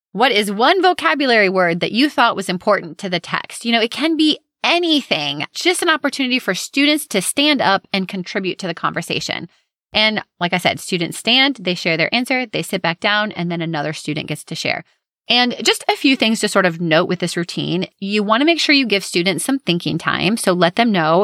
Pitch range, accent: 170-235 Hz, American